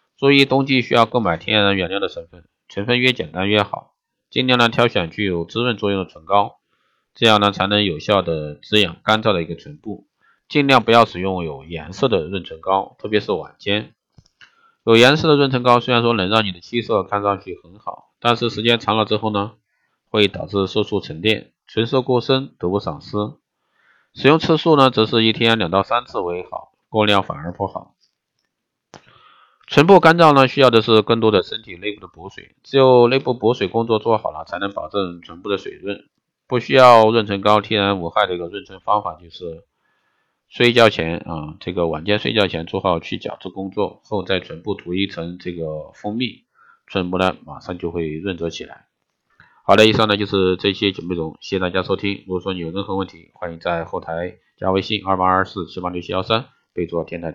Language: Chinese